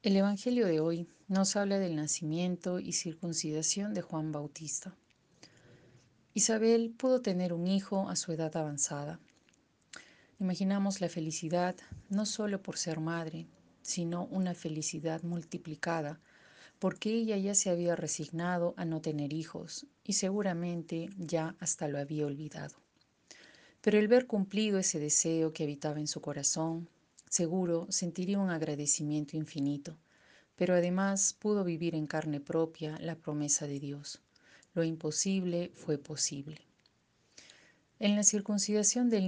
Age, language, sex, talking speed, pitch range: 40-59, Spanish, female, 130 wpm, 155-195 Hz